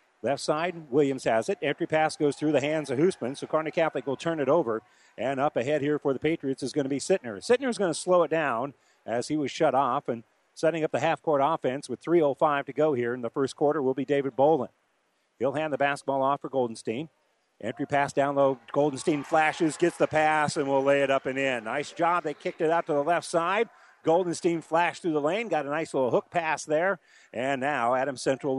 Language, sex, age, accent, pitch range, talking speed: English, male, 50-69, American, 135-175 Hz, 235 wpm